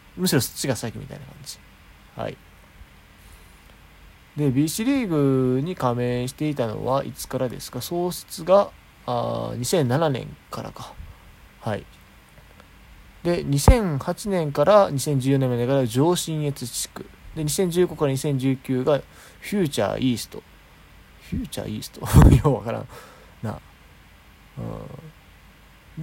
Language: Japanese